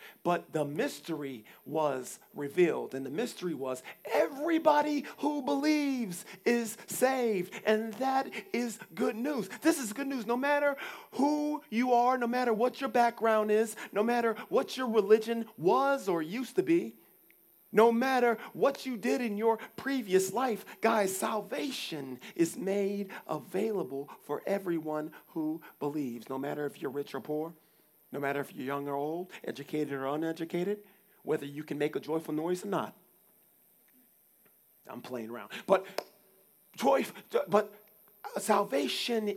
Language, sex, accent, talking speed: English, male, American, 145 wpm